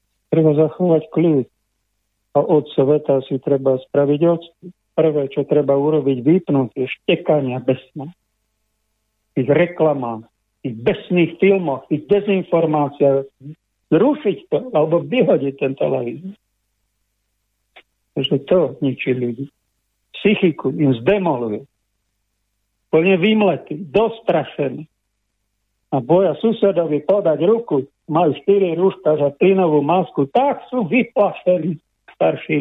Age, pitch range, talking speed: 50-69, 125-170 Hz, 100 wpm